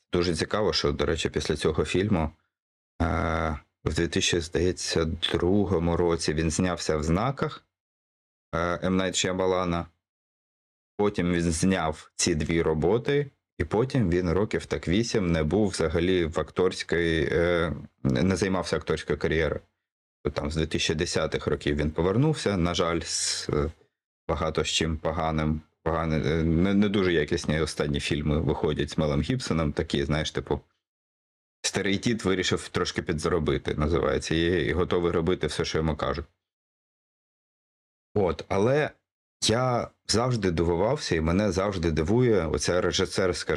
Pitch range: 80-95 Hz